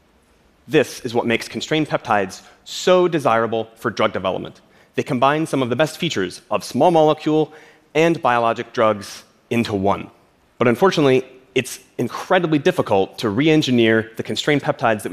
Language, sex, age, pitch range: Korean, male, 30-49, 110-150 Hz